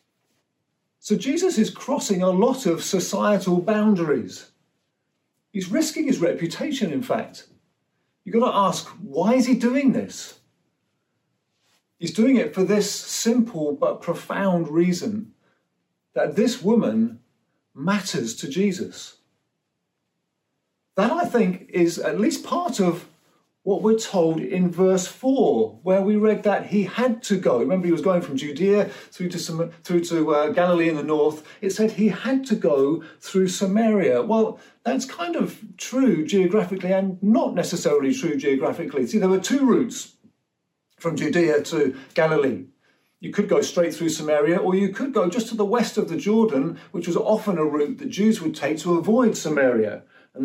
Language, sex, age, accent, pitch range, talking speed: English, male, 40-59, British, 170-225 Hz, 160 wpm